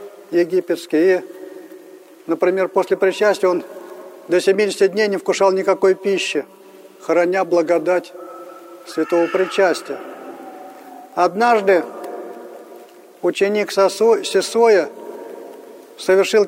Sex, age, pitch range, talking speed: male, 40-59, 190-220 Hz, 80 wpm